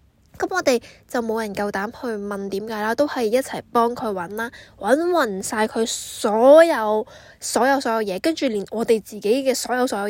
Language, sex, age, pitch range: Chinese, female, 10-29, 200-260 Hz